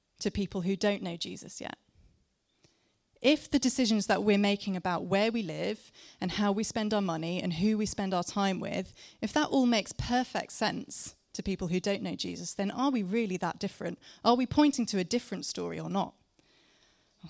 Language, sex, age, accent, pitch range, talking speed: English, female, 20-39, British, 190-235 Hz, 200 wpm